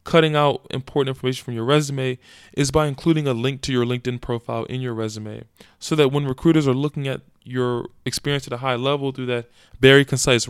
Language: English